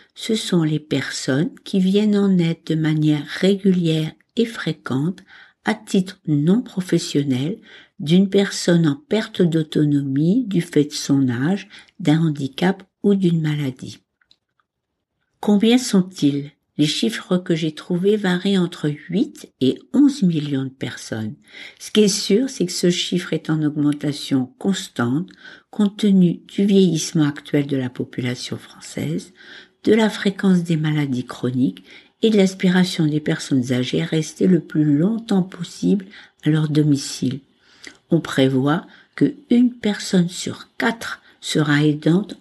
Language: French